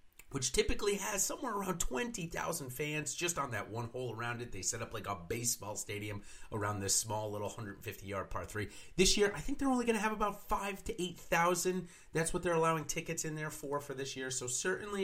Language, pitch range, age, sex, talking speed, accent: English, 115-180 Hz, 30-49, male, 215 wpm, American